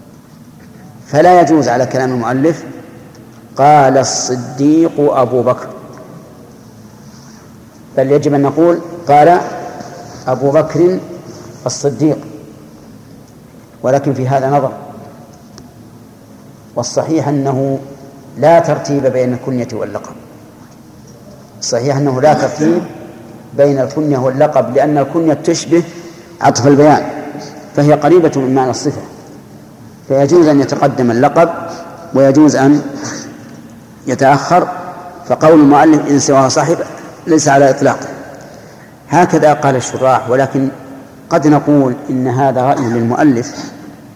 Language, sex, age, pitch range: Arabic, male, 50-69, 135-155 Hz